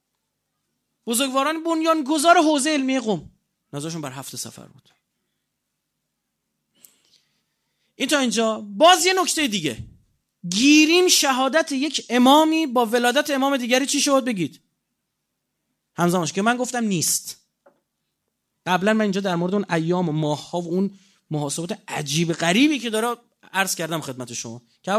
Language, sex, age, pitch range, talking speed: Persian, male, 30-49, 170-245 Hz, 130 wpm